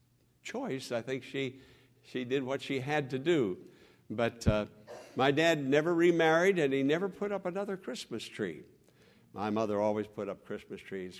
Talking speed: 170 wpm